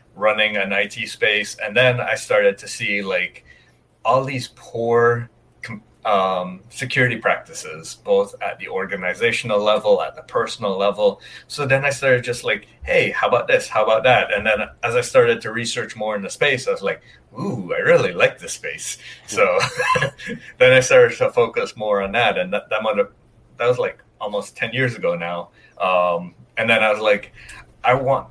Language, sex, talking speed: English, male, 185 wpm